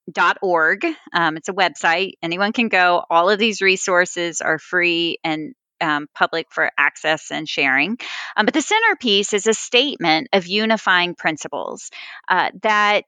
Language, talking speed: English, 155 wpm